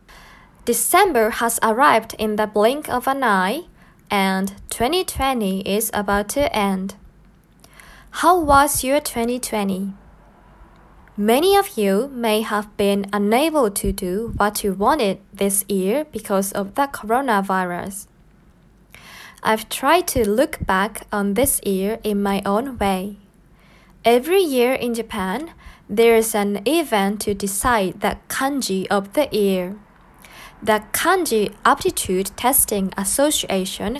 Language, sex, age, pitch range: Japanese, female, 20-39, 195-245 Hz